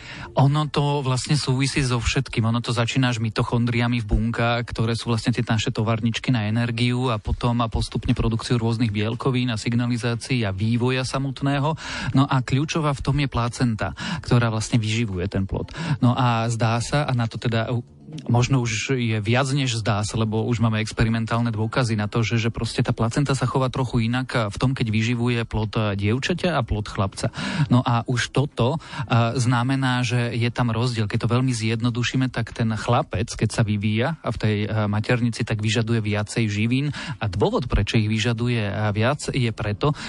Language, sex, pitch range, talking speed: Slovak, male, 115-130 Hz, 180 wpm